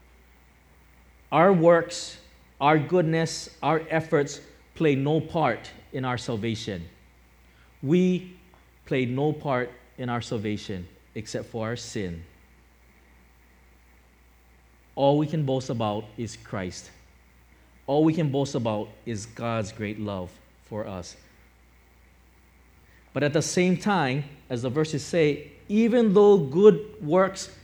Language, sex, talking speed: English, male, 115 wpm